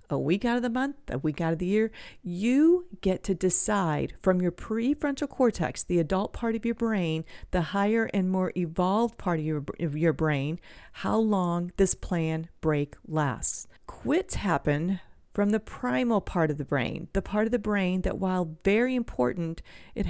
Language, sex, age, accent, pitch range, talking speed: English, female, 40-59, American, 165-215 Hz, 185 wpm